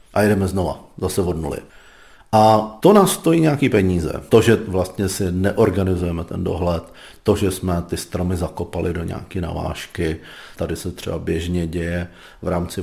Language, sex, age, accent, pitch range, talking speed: Czech, male, 40-59, native, 90-100 Hz, 165 wpm